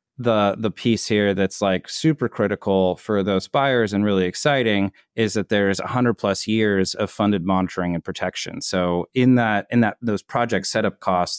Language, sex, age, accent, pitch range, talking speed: English, male, 30-49, American, 95-110 Hz, 180 wpm